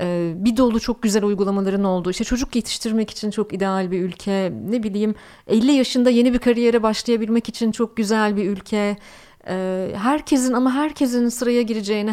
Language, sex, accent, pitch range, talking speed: Turkish, female, native, 190-255 Hz, 160 wpm